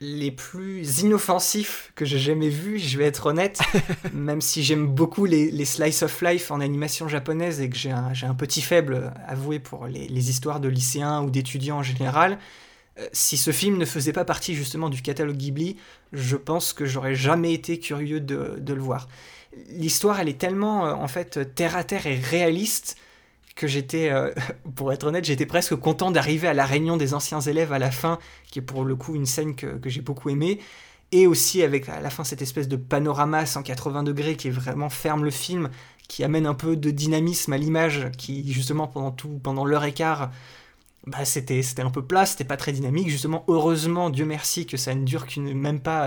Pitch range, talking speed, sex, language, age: 140-170 Hz, 210 wpm, male, French, 20-39